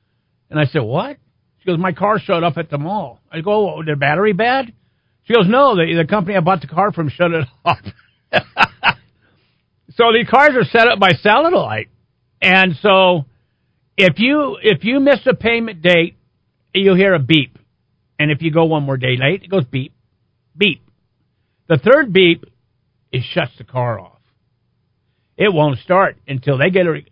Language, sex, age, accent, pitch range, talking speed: English, male, 50-69, American, 130-205 Hz, 180 wpm